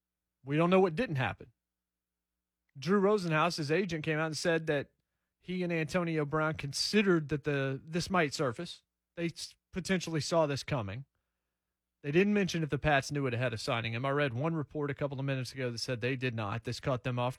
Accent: American